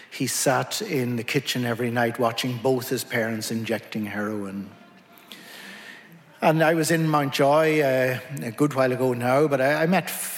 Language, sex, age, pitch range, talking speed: English, male, 60-79, 115-150 Hz, 170 wpm